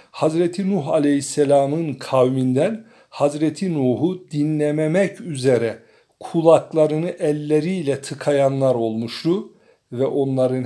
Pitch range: 125-165 Hz